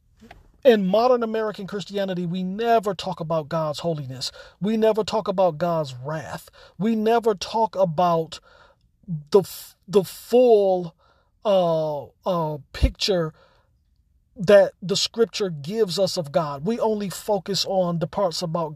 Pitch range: 150-205 Hz